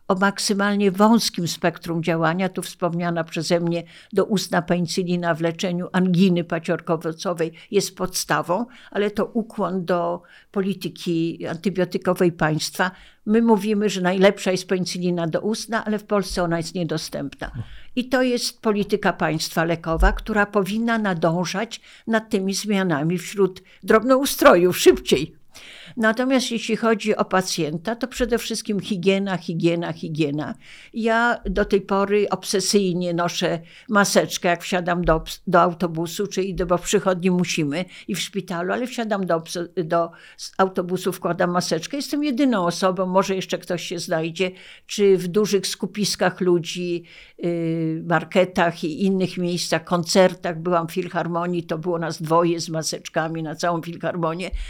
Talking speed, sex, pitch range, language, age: 130 wpm, female, 170-205 Hz, Polish, 60-79